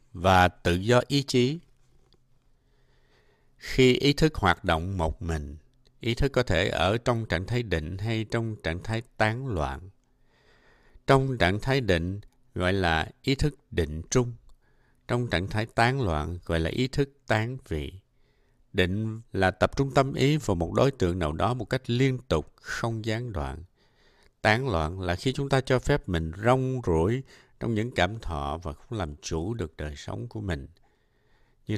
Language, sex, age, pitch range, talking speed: Vietnamese, male, 60-79, 85-125 Hz, 175 wpm